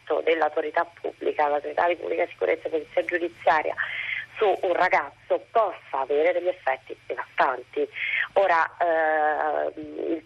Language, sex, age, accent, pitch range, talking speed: Italian, female, 30-49, native, 150-195 Hz, 125 wpm